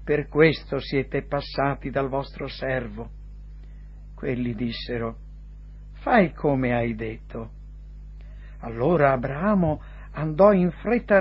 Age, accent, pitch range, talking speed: 60-79, native, 125-190 Hz, 95 wpm